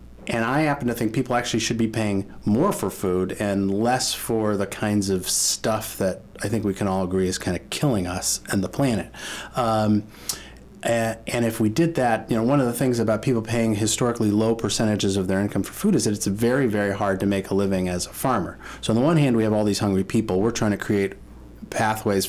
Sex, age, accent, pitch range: male, 40-59, American, 95-115 Hz